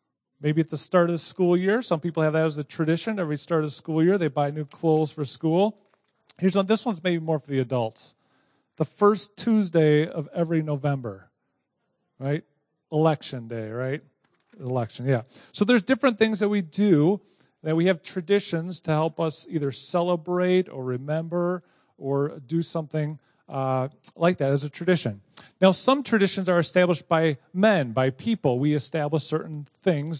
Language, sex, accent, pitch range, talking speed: English, male, American, 145-180 Hz, 175 wpm